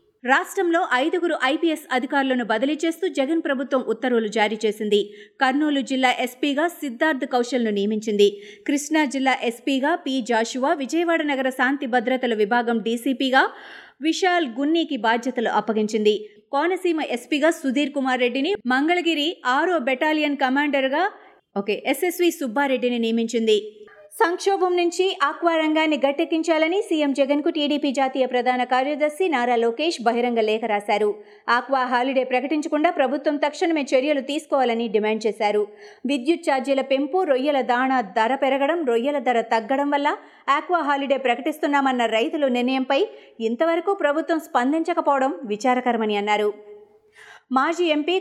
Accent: native